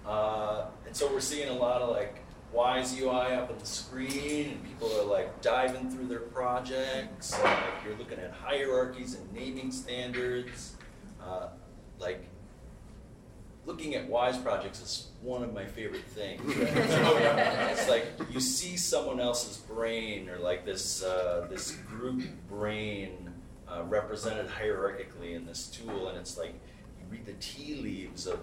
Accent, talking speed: American, 155 wpm